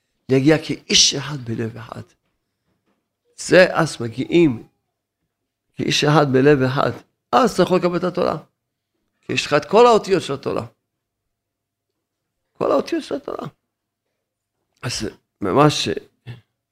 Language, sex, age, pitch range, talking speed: Hebrew, male, 50-69, 115-150 Hz, 120 wpm